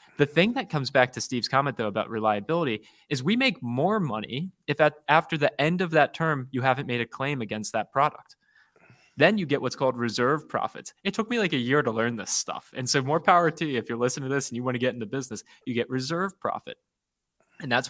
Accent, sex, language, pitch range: American, male, English, 115-145 Hz